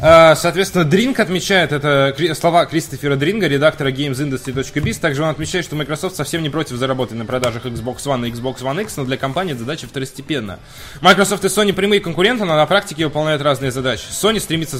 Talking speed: 180 wpm